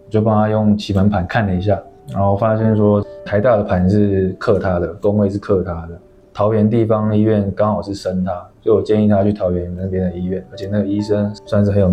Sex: male